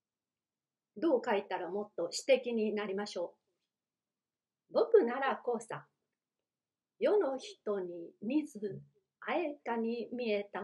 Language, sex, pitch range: Japanese, female, 210-290 Hz